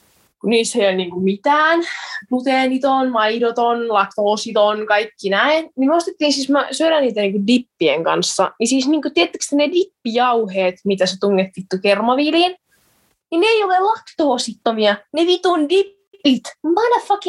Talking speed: 140 wpm